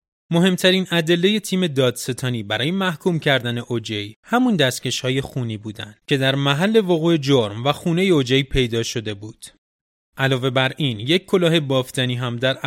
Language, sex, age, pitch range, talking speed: Persian, male, 30-49, 125-165 Hz, 150 wpm